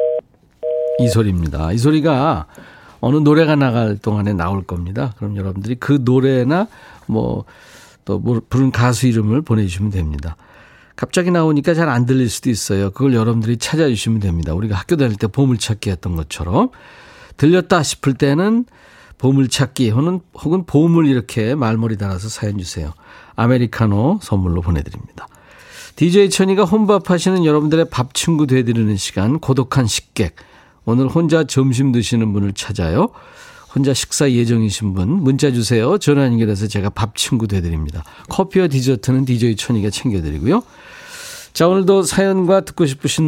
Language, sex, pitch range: Korean, male, 105-155 Hz